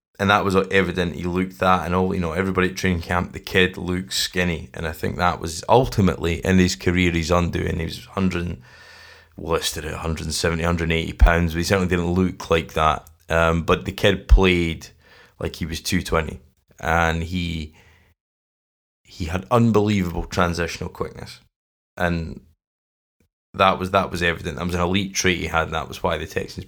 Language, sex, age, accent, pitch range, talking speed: English, male, 20-39, British, 85-95 Hz, 180 wpm